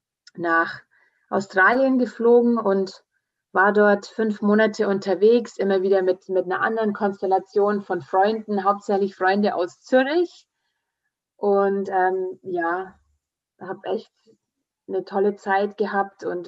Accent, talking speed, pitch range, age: German, 115 wpm, 185-215 Hz, 30-49